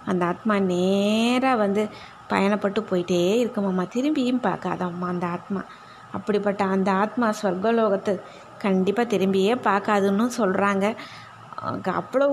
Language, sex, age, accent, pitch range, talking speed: Tamil, female, 20-39, native, 190-240 Hz, 100 wpm